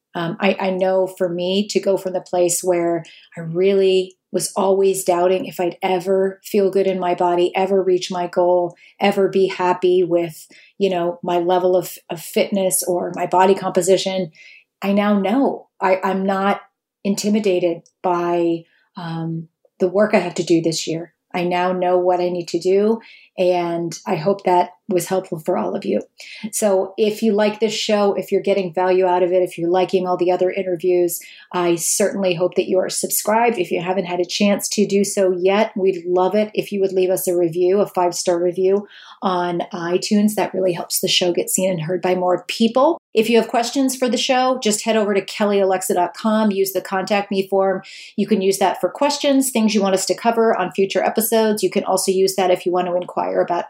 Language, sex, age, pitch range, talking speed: English, female, 30-49, 180-205 Hz, 205 wpm